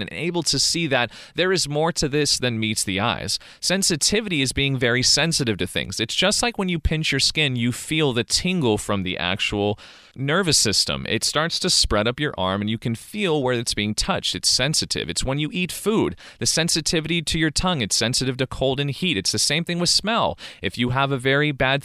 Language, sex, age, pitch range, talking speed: English, male, 30-49, 115-160 Hz, 230 wpm